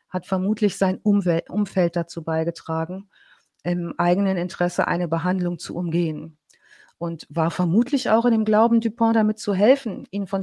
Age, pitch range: 50-69, 165-200 Hz